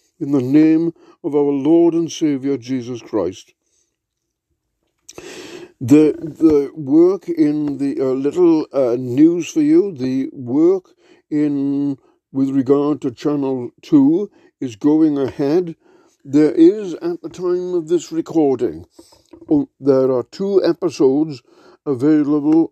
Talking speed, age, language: 120 wpm, 60-79, English